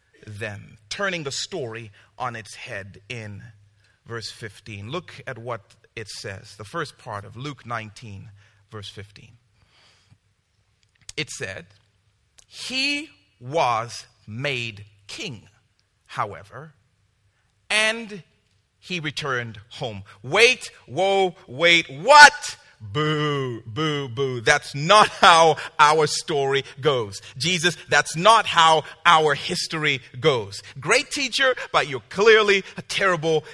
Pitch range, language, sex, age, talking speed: 105-165 Hz, English, male, 40-59, 110 wpm